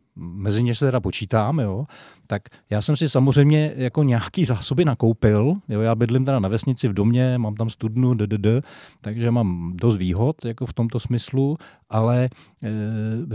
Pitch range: 105-140 Hz